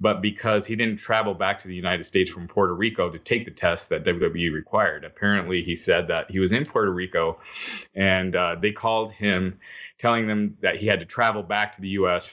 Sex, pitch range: male, 90-110 Hz